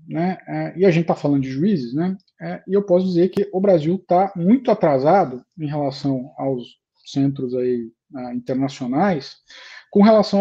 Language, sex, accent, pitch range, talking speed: Portuguese, male, Brazilian, 140-190 Hz, 175 wpm